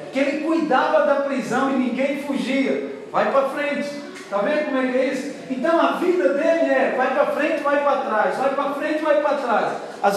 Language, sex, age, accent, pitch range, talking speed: Portuguese, male, 40-59, Brazilian, 250-300 Hz, 200 wpm